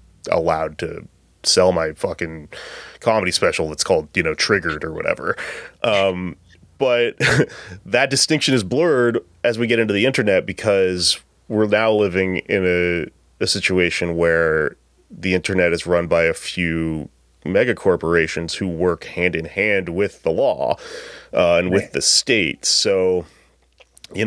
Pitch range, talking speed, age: 85-110 Hz, 145 wpm, 30-49